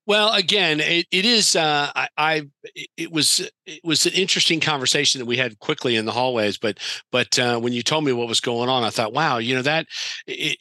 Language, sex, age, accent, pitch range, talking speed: English, male, 50-69, American, 120-150 Hz, 225 wpm